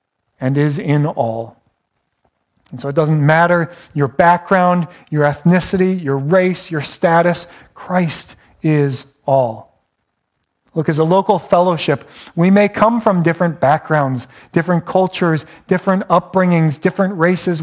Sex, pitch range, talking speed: male, 150-195 Hz, 125 wpm